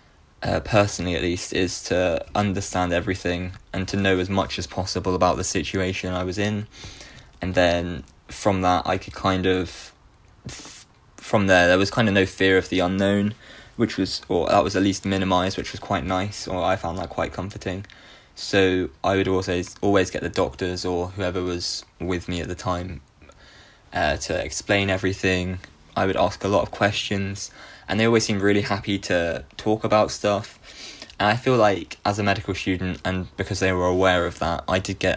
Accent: British